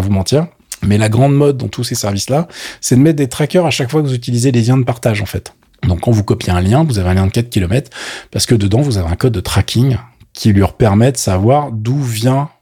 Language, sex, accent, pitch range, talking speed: French, male, French, 95-125 Hz, 265 wpm